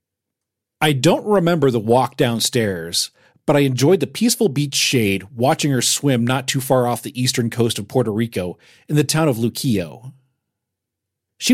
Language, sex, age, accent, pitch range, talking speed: English, male, 40-59, American, 110-150 Hz, 165 wpm